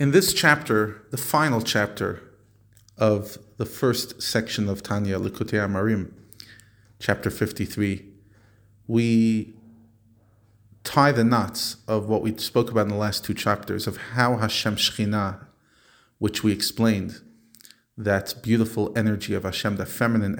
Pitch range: 100-115 Hz